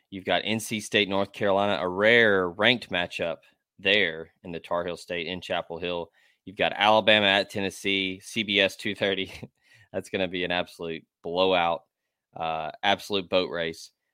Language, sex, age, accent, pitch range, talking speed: English, male, 20-39, American, 90-110 Hz, 155 wpm